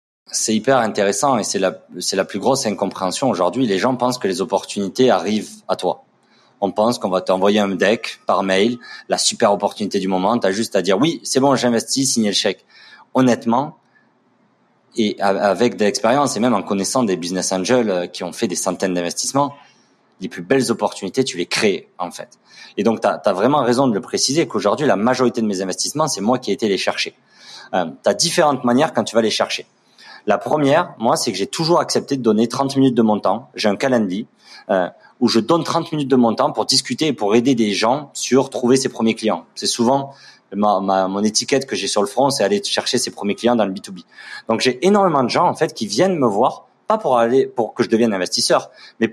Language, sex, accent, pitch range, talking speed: French, male, French, 105-135 Hz, 225 wpm